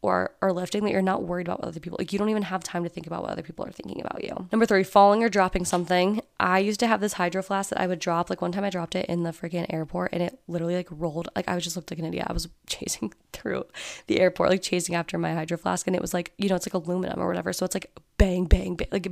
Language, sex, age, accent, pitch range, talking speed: English, female, 20-39, American, 175-215 Hz, 305 wpm